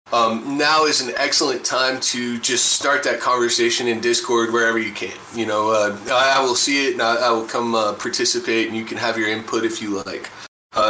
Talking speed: 225 wpm